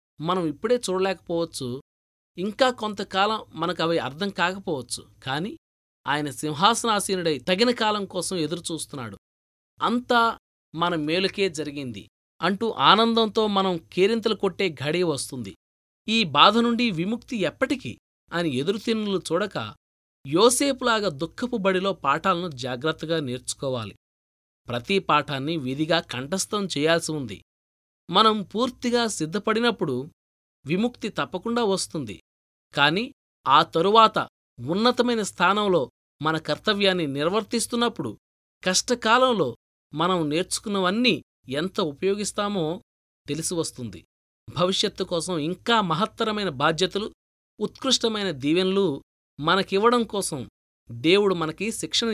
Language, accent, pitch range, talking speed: Telugu, native, 145-210 Hz, 90 wpm